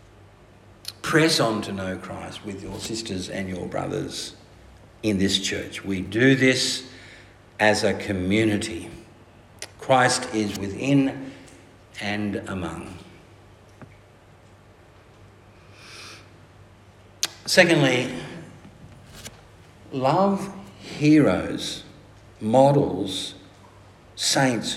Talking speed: 75 wpm